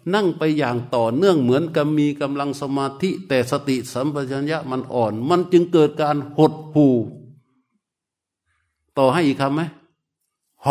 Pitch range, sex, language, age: 145-195 Hz, male, Thai, 60-79